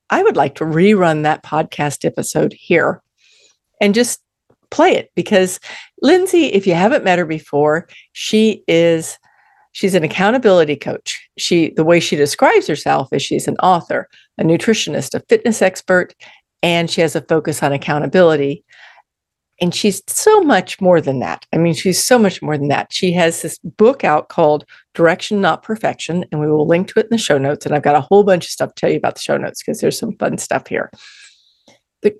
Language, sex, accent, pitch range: English, female, American, 155-215 Hz